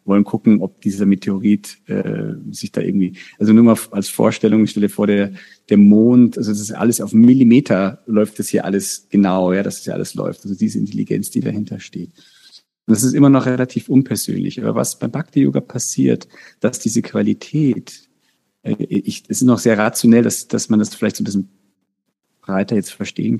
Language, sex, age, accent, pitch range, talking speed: German, male, 40-59, German, 100-115 Hz, 195 wpm